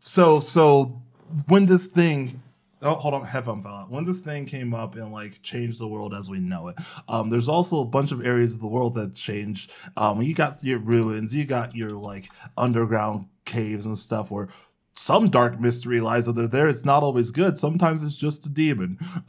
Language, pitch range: English, 115-150 Hz